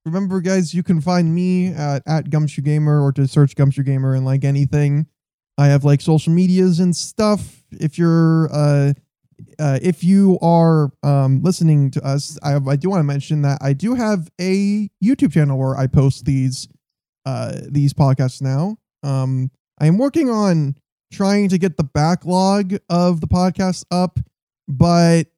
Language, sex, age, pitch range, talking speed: English, male, 10-29, 140-175 Hz, 170 wpm